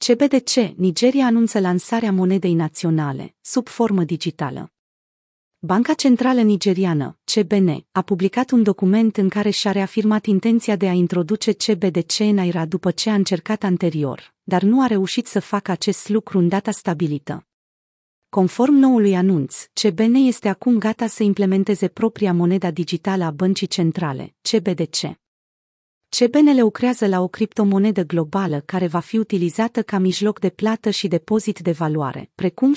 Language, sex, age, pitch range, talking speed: Romanian, female, 30-49, 175-220 Hz, 145 wpm